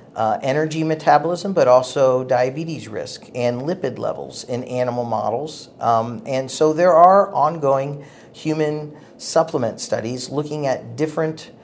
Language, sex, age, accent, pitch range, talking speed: English, male, 50-69, American, 120-145 Hz, 130 wpm